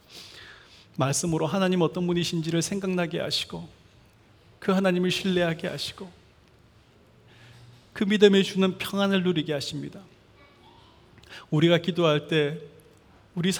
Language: Korean